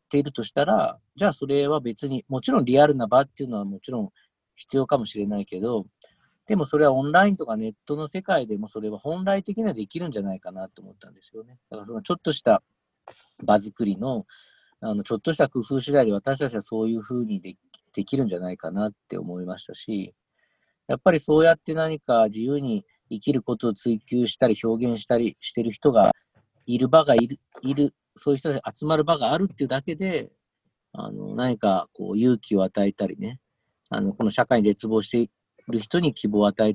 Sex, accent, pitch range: male, native, 105-150 Hz